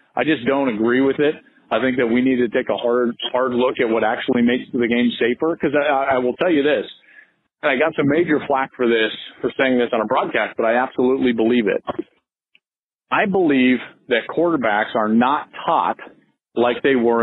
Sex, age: male, 40-59